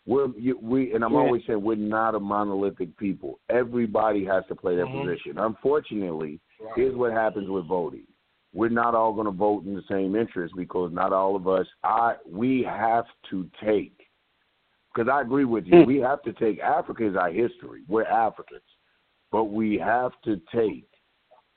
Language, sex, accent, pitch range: English, male, American, 100-120 Hz